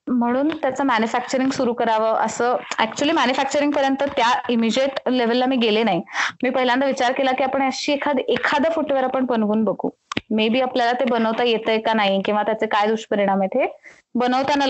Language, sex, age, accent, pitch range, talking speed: Marathi, female, 20-39, native, 220-265 Hz, 175 wpm